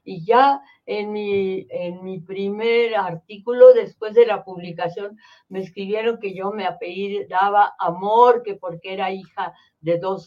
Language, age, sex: Spanish, 50-69, female